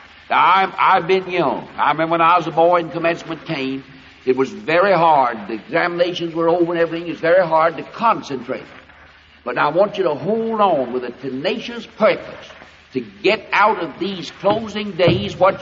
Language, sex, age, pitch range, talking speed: English, male, 60-79, 155-195 Hz, 190 wpm